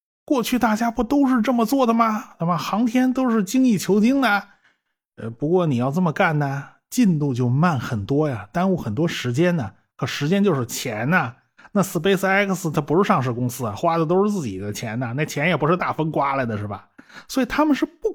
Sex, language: male, Chinese